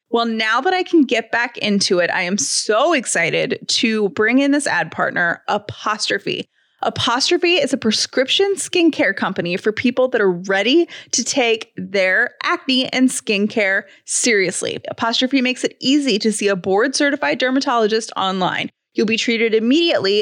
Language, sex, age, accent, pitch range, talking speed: English, female, 20-39, American, 210-290 Hz, 155 wpm